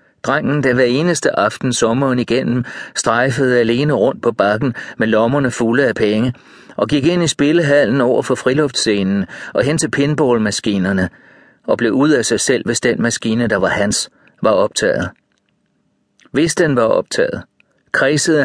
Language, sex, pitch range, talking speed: Danish, male, 110-140 Hz, 155 wpm